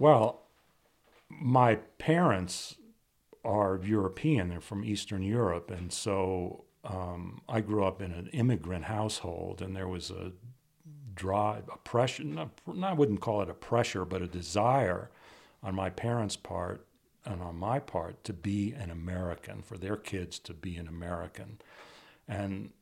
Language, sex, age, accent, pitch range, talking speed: English, male, 60-79, American, 95-115 Hz, 145 wpm